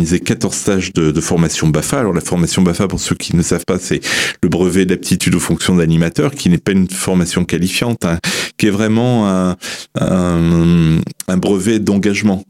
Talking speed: 180 wpm